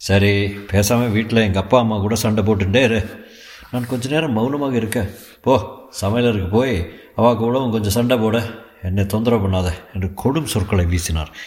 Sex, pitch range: male, 100-135 Hz